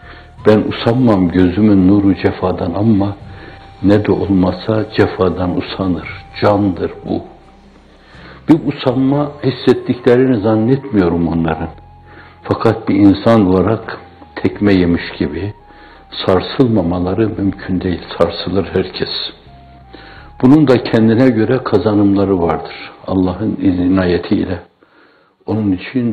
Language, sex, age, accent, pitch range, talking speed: Turkish, male, 60-79, native, 95-115 Hz, 90 wpm